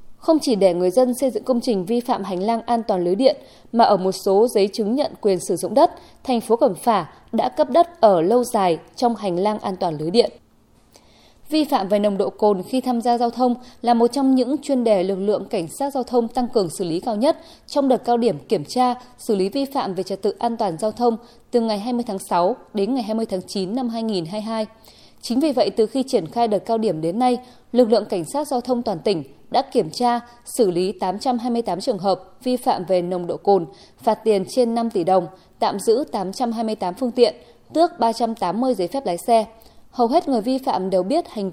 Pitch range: 195-250 Hz